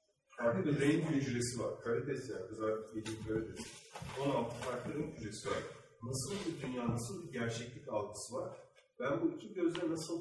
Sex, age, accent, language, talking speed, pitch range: male, 40-59, native, Turkish, 165 wpm, 120-165 Hz